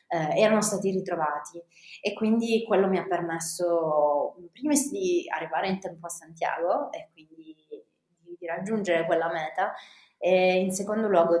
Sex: female